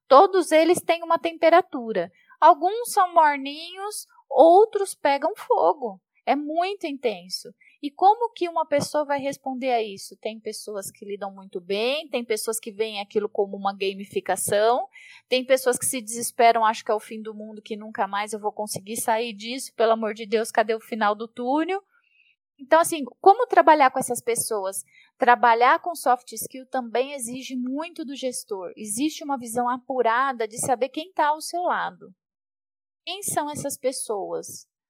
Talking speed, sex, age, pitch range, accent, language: 165 wpm, female, 20-39, 230-335 Hz, Brazilian, Portuguese